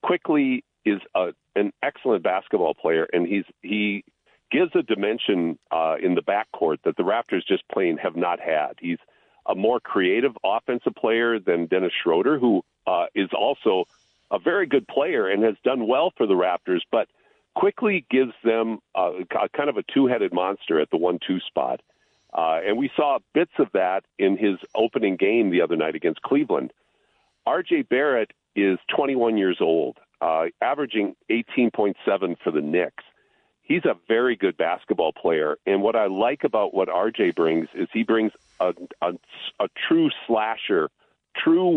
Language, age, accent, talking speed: English, 50-69, American, 165 wpm